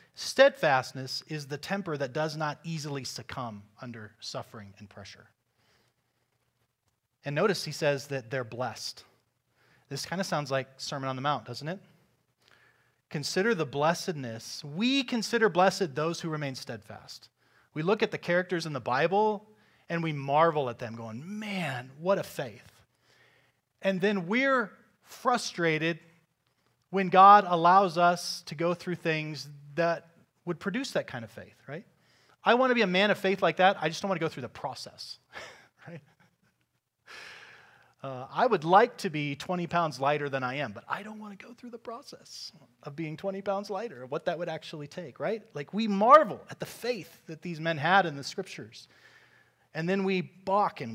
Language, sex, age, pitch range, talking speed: English, male, 30-49, 130-190 Hz, 175 wpm